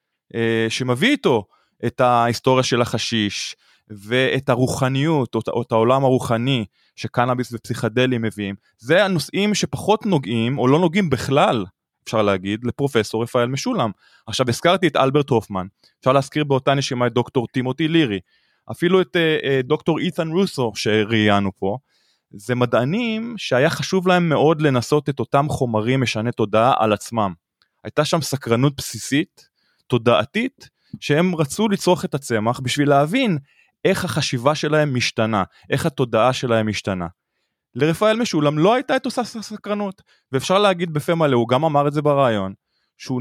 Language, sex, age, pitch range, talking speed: Hebrew, male, 20-39, 115-170 Hz, 145 wpm